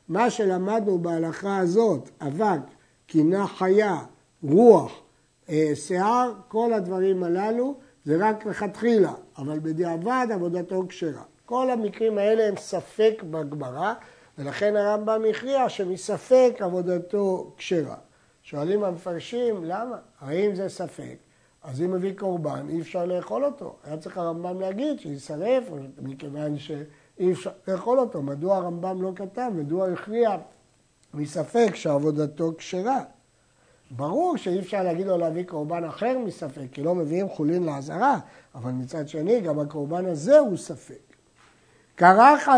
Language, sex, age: Hebrew, male, 60-79